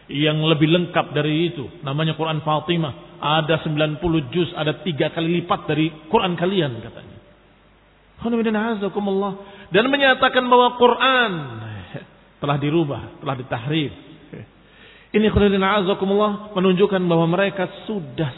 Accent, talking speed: native, 110 wpm